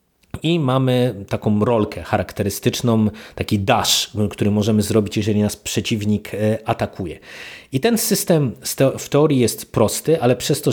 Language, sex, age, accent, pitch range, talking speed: Polish, male, 30-49, native, 105-120 Hz, 135 wpm